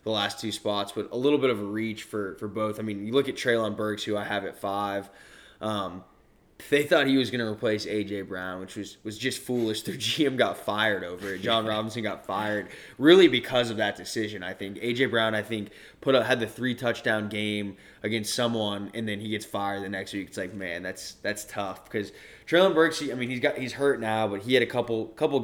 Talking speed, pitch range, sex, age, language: 240 wpm, 105-120 Hz, male, 20-39, English